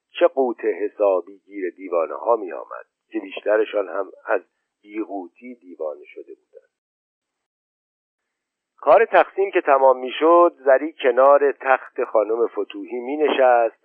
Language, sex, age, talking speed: Persian, male, 50-69, 110 wpm